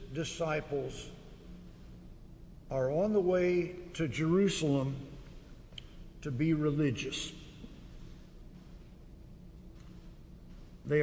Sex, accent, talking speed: male, American, 60 wpm